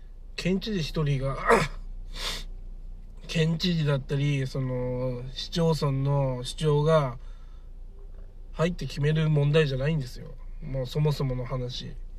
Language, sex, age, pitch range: Japanese, male, 20-39, 120-150 Hz